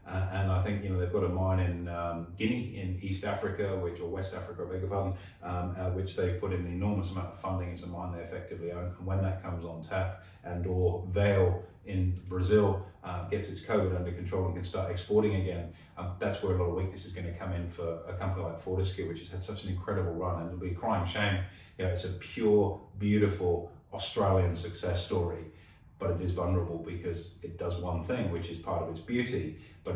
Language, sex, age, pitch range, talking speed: English, male, 30-49, 85-95 Hz, 230 wpm